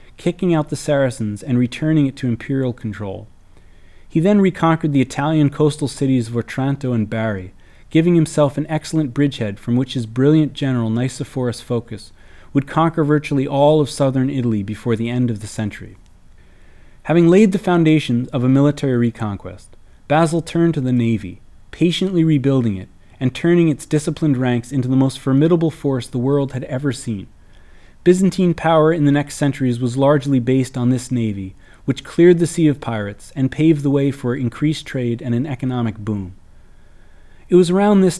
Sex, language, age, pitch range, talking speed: male, English, 30-49, 115-155 Hz, 175 wpm